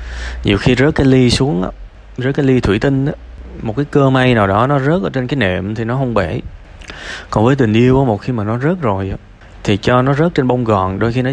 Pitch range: 100-135 Hz